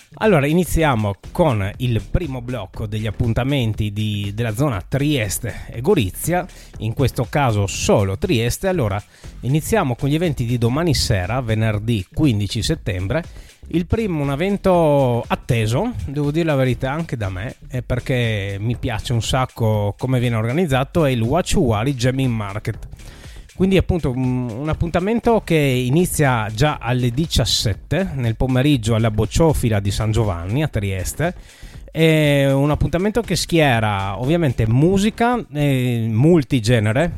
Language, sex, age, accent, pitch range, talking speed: Italian, male, 30-49, native, 115-145 Hz, 135 wpm